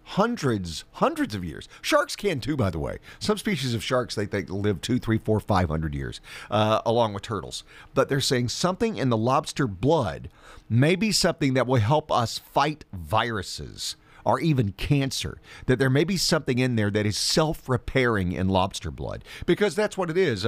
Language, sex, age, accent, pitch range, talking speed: English, male, 50-69, American, 110-165 Hz, 190 wpm